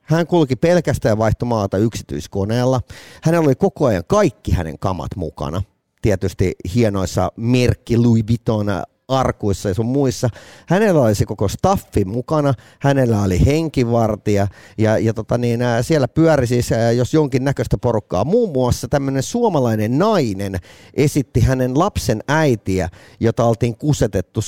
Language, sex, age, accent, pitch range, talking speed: Finnish, male, 30-49, native, 100-135 Hz, 125 wpm